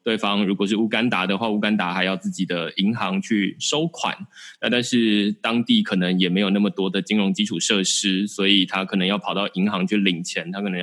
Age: 20-39